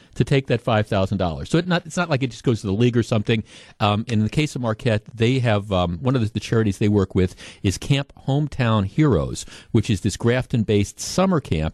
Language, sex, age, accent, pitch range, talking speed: English, male, 50-69, American, 100-125 Hz, 235 wpm